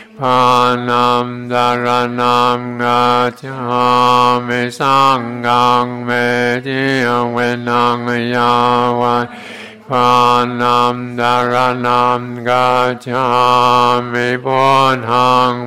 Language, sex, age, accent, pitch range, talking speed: English, male, 60-79, American, 120-125 Hz, 50 wpm